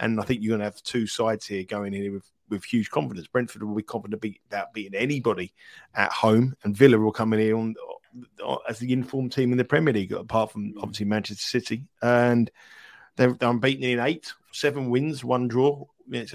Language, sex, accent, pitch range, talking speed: English, male, British, 110-125 Hz, 200 wpm